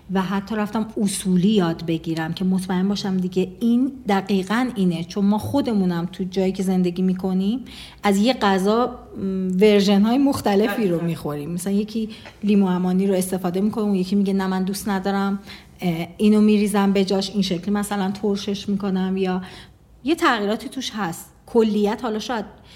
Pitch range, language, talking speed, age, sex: 185-225 Hz, Persian, 155 wpm, 40-59, female